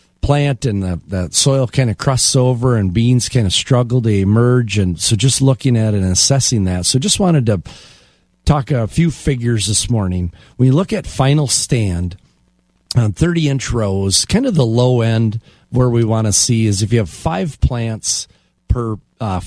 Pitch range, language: 100-130 Hz, English